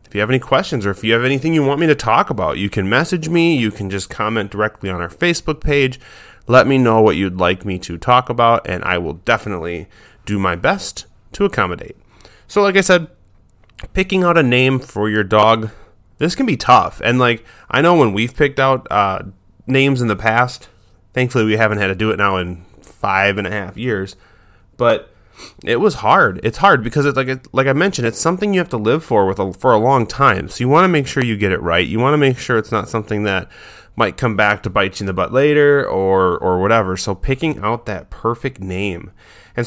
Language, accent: English, American